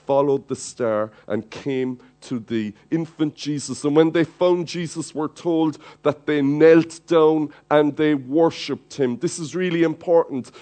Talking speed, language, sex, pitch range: 160 wpm, English, male, 140-170 Hz